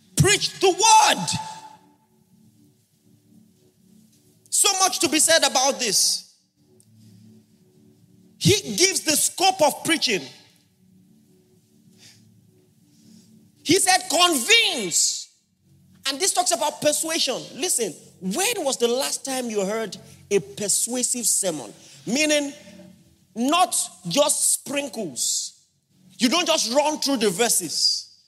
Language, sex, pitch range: English, male, 205-325 Hz